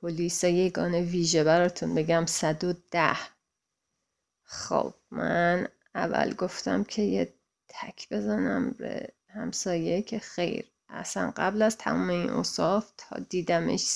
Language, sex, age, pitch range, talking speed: English, female, 30-49, 165-200 Hz, 120 wpm